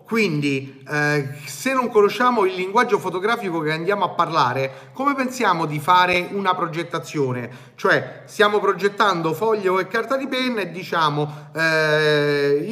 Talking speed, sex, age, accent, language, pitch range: 135 wpm, male, 30-49, native, Italian, 150-220 Hz